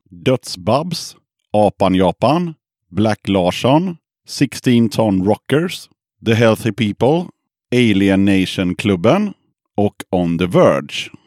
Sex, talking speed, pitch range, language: male, 100 wpm, 100-145 Hz, Swedish